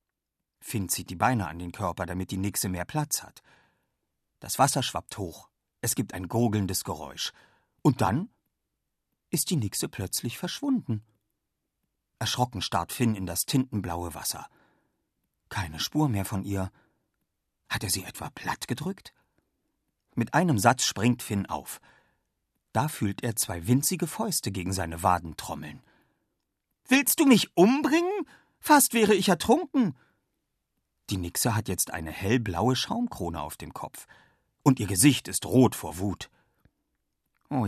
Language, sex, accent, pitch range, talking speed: German, male, German, 95-140 Hz, 140 wpm